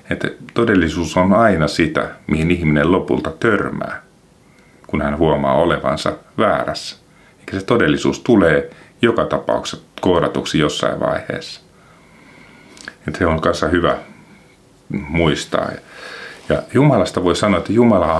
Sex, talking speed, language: male, 115 wpm, Finnish